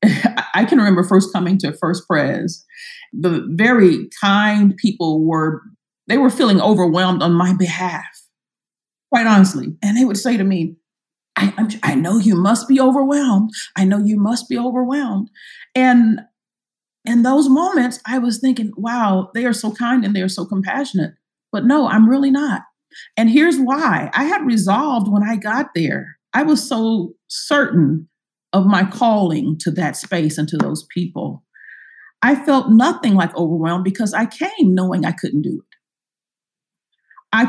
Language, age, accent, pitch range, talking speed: English, 40-59, American, 180-245 Hz, 160 wpm